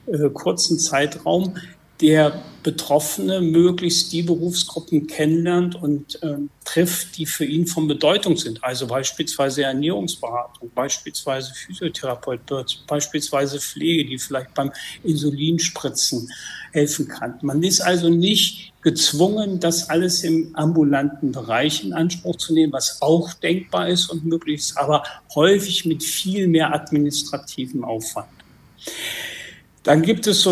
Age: 60-79